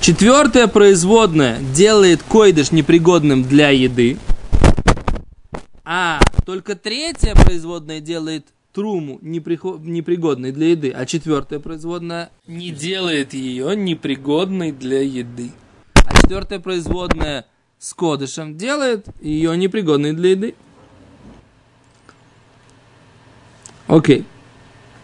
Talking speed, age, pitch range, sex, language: 90 wpm, 20-39, 130-195 Hz, male, Russian